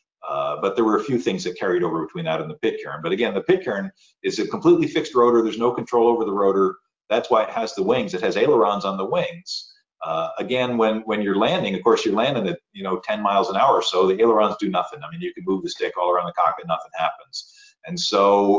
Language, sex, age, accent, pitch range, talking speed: English, male, 50-69, American, 100-135 Hz, 260 wpm